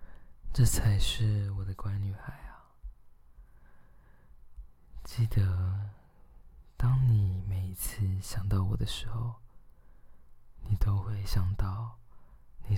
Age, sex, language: 20-39, male, Chinese